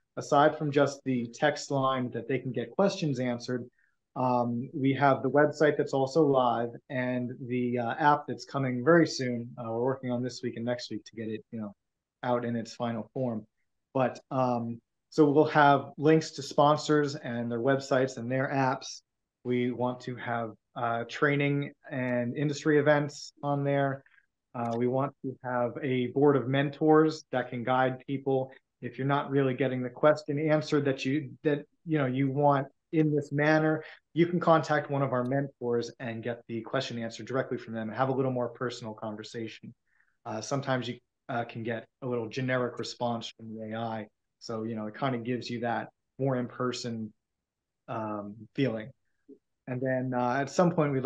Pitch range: 120-140 Hz